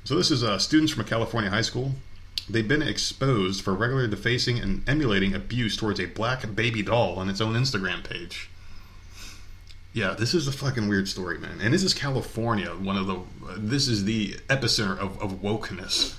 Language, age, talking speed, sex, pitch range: English, 30-49, 190 wpm, male, 95-115 Hz